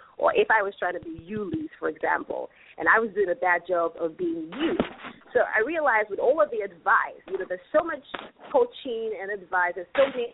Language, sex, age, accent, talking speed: English, female, 30-49, American, 225 wpm